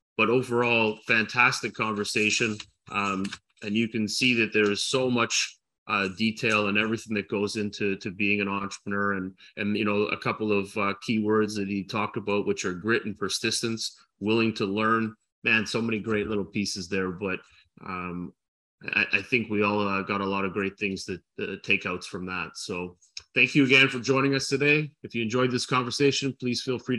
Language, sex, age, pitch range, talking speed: English, male, 30-49, 100-125 Hz, 200 wpm